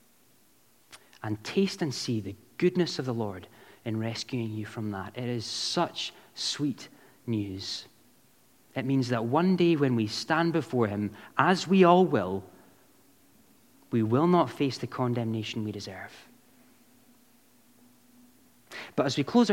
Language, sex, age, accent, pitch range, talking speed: English, male, 30-49, British, 115-165 Hz, 140 wpm